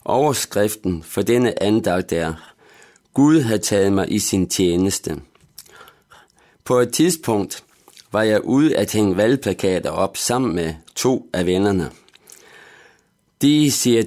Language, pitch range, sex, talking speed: Danish, 95-120 Hz, male, 125 wpm